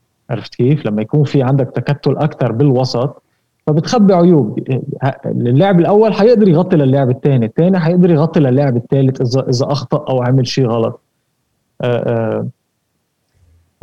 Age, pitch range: 20-39, 120-160 Hz